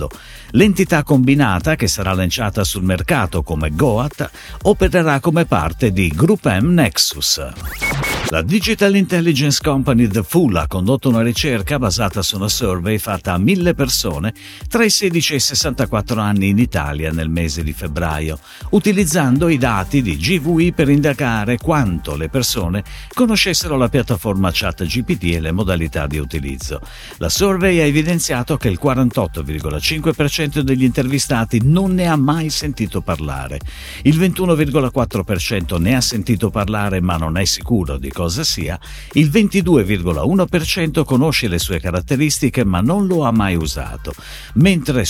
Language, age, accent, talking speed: Italian, 50-69, native, 145 wpm